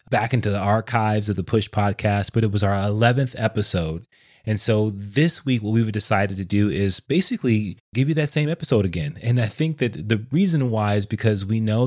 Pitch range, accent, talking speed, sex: 95-120 Hz, American, 210 wpm, male